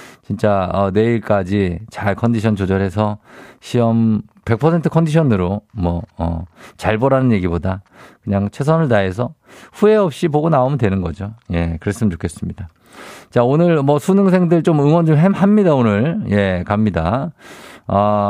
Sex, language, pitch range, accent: male, Korean, 100-140 Hz, native